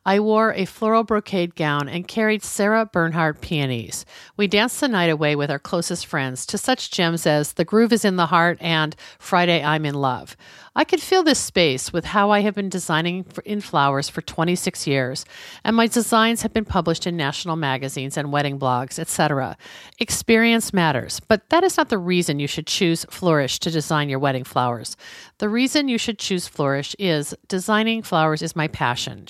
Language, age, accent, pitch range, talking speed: English, 50-69, American, 150-210 Hz, 190 wpm